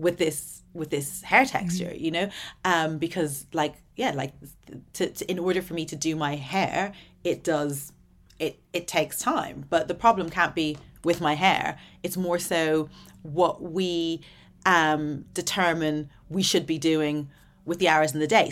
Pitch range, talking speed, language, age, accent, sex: 160-195 Hz, 175 wpm, English, 30-49, British, female